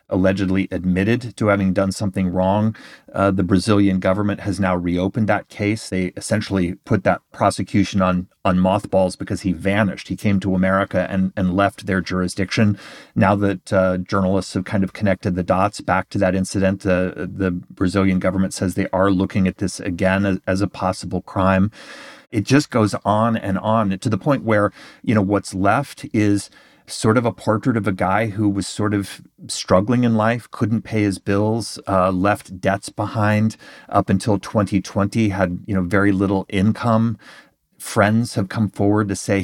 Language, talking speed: English, 180 wpm